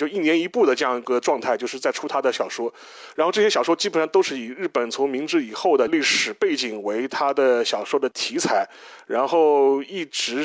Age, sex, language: 30-49, male, Chinese